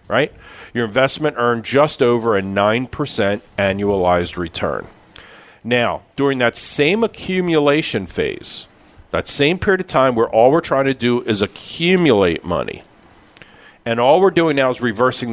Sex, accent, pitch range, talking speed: male, American, 100-135 Hz, 145 wpm